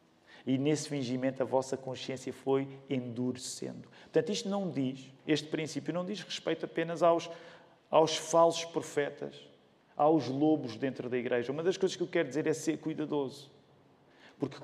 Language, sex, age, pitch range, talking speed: Portuguese, male, 40-59, 135-195 Hz, 155 wpm